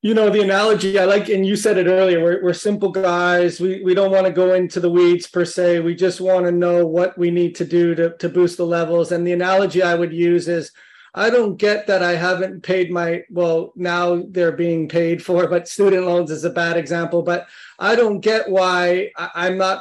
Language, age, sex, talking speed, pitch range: English, 30-49, male, 230 wpm, 170-185 Hz